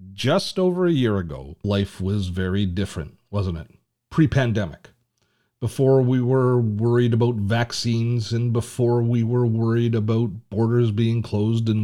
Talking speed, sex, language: 140 wpm, male, English